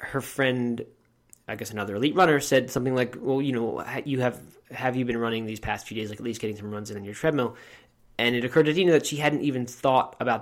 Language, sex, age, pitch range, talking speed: English, male, 20-39, 115-145 Hz, 255 wpm